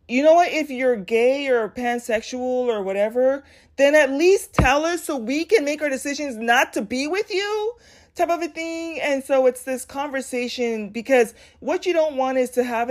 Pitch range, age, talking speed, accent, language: 205-275 Hz, 30-49, 200 wpm, American, English